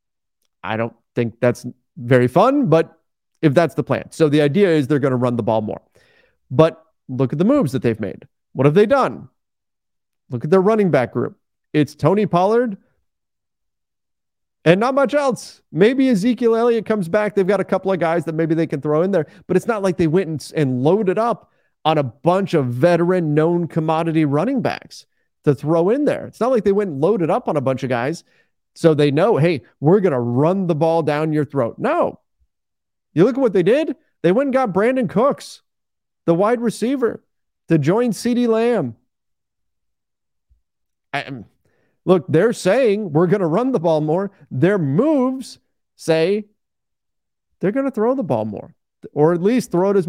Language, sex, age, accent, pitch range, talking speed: English, male, 30-49, American, 140-205 Hz, 190 wpm